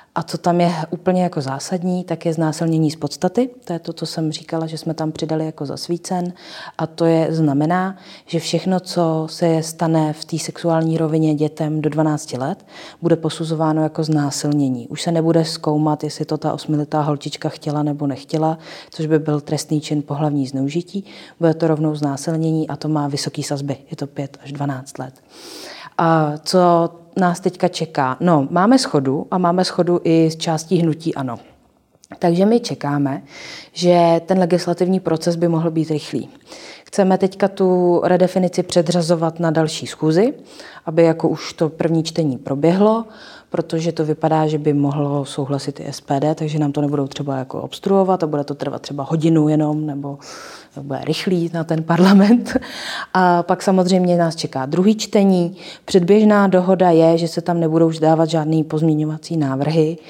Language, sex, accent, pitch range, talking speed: Czech, female, native, 150-175 Hz, 170 wpm